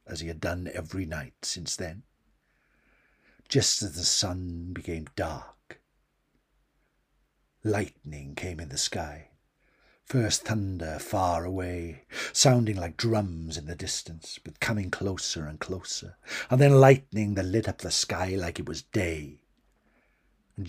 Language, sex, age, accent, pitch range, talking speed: English, male, 60-79, British, 85-125 Hz, 135 wpm